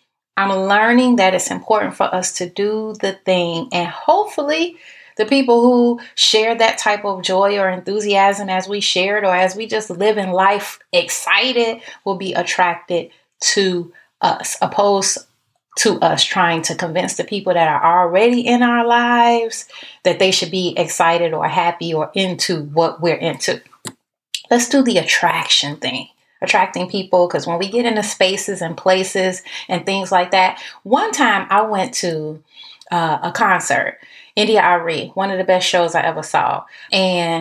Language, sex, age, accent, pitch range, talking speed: English, female, 30-49, American, 180-225 Hz, 165 wpm